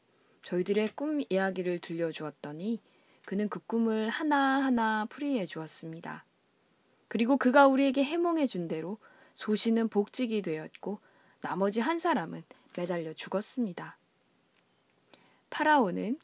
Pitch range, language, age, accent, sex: 180-260 Hz, Korean, 20-39, native, female